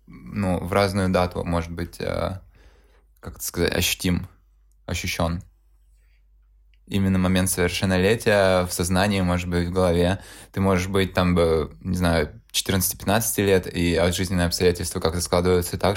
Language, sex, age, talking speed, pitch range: Russian, male, 20-39, 130 wpm, 85-95 Hz